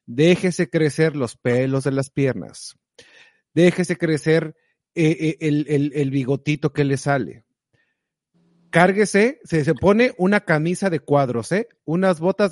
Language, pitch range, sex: Spanish, 130-175 Hz, male